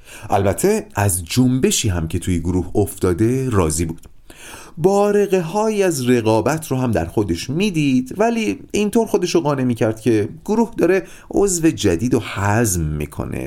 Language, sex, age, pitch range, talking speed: Persian, male, 40-59, 105-175 Hz, 145 wpm